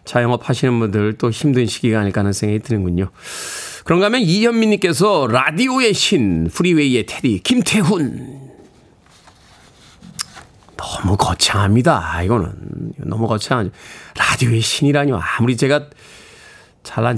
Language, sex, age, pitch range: Korean, male, 40-59, 110-170 Hz